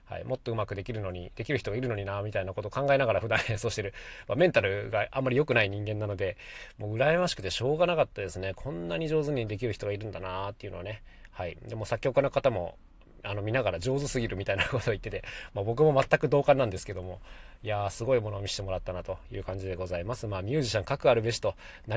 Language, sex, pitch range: Japanese, male, 100-135 Hz